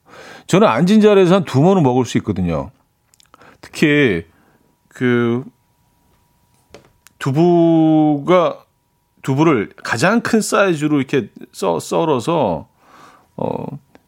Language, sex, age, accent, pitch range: Korean, male, 40-59, native, 110-160 Hz